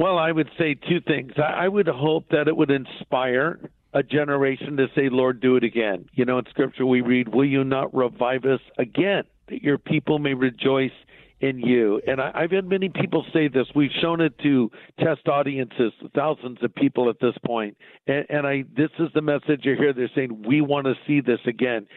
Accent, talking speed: American, 210 wpm